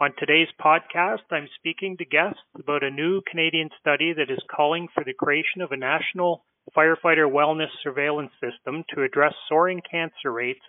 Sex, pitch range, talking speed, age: male, 140-165 Hz, 170 wpm, 30-49